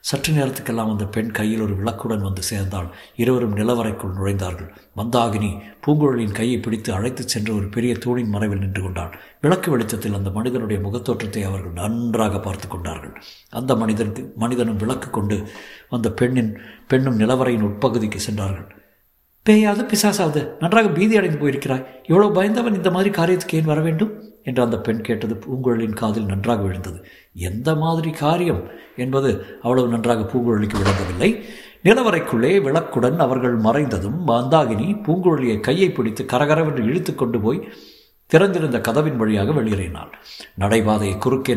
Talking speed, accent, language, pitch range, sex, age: 125 wpm, native, Tamil, 105-135 Hz, male, 60-79